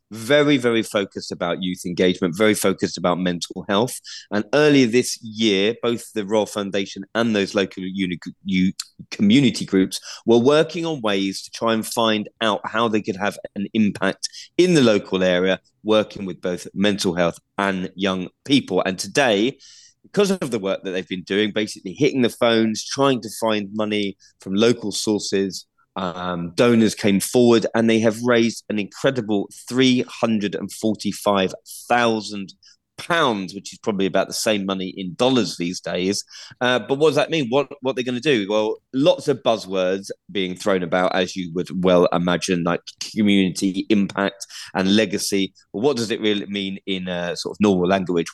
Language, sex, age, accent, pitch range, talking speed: English, male, 20-39, British, 95-115 Hz, 170 wpm